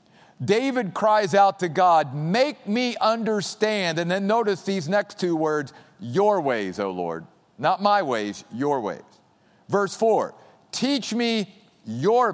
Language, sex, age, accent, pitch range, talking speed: English, male, 50-69, American, 195-245 Hz, 140 wpm